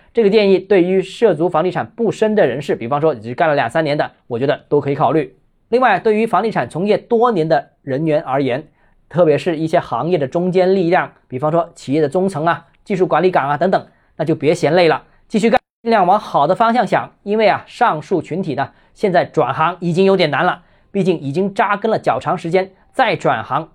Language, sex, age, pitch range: Chinese, male, 20-39, 155-200 Hz